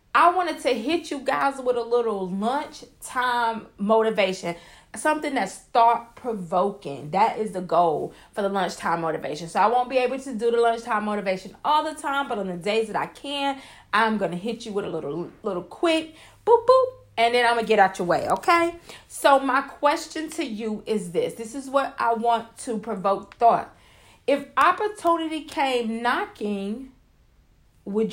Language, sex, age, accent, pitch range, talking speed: English, female, 40-59, American, 210-280 Hz, 180 wpm